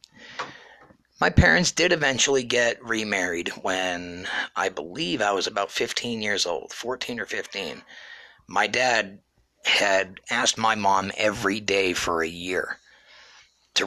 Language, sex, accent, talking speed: English, male, American, 130 wpm